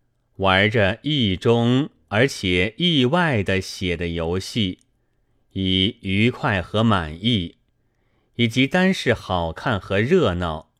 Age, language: 30-49, Chinese